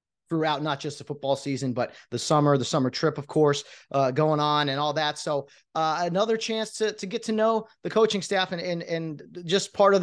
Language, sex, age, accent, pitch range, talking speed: English, male, 30-49, American, 135-175 Hz, 225 wpm